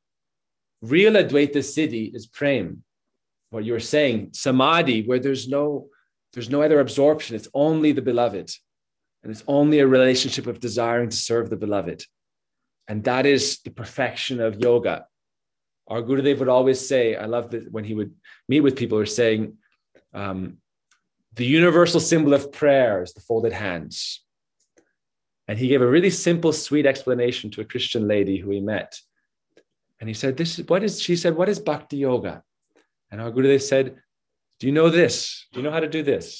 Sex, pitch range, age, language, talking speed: male, 110-145 Hz, 30-49, English, 180 wpm